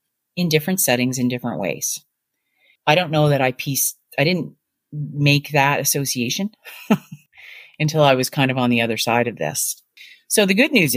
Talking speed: 175 wpm